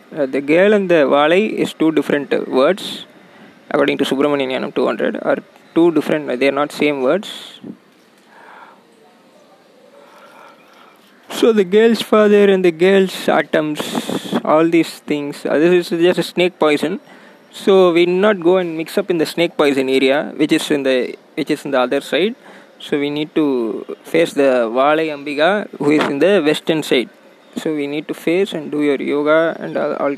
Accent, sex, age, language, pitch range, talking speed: native, male, 20-39, Tamil, 145-185 Hz, 185 wpm